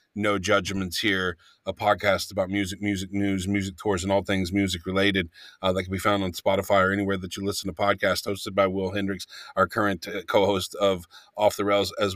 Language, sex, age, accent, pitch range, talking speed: English, male, 40-59, American, 100-160 Hz, 210 wpm